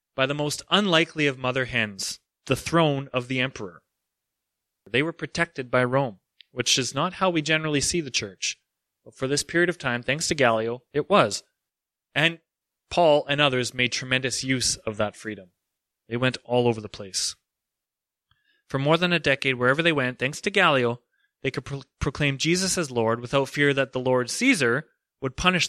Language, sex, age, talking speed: English, male, 30-49, 185 wpm